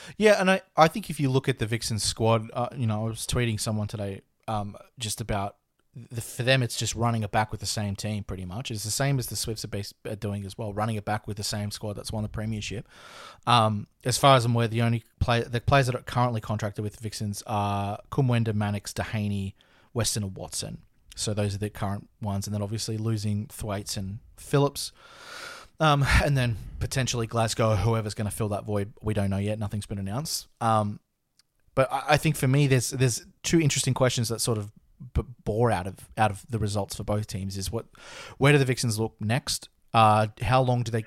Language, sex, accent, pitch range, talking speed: English, male, Australian, 105-125 Hz, 225 wpm